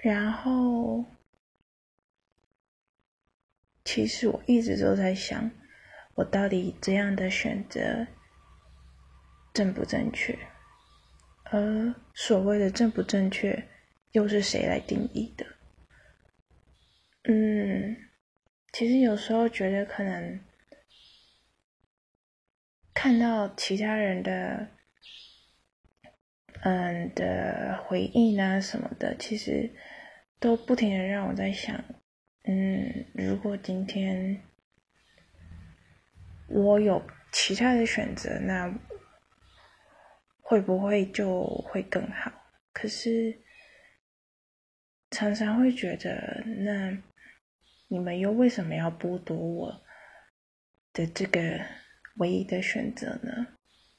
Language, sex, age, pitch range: Chinese, female, 20-39, 185-230 Hz